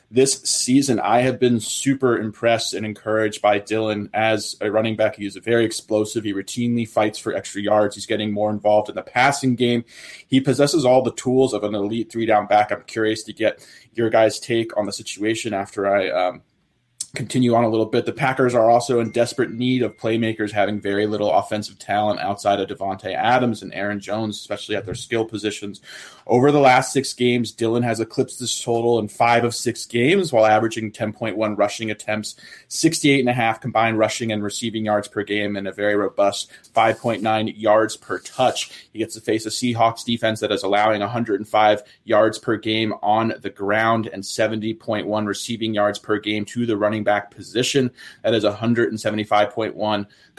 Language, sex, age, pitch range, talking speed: English, male, 20-39, 105-120 Hz, 185 wpm